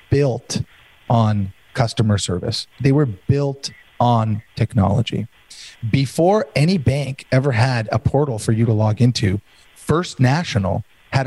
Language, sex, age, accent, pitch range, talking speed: English, male, 30-49, American, 115-145 Hz, 130 wpm